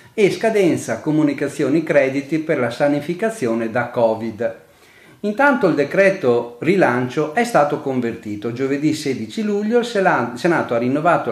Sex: male